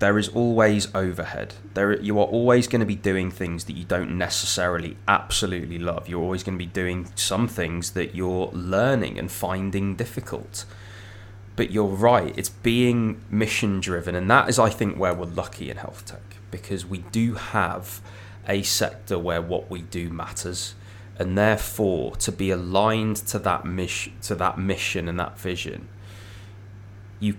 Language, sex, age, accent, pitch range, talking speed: English, male, 20-39, British, 90-105 Hz, 160 wpm